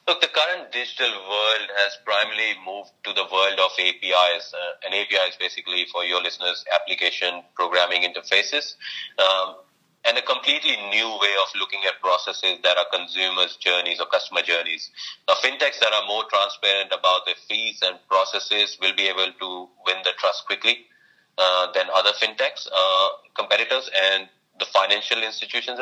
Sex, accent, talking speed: male, Indian, 160 wpm